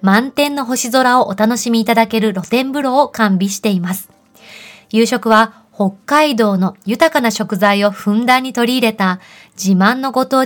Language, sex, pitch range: Japanese, female, 200-245 Hz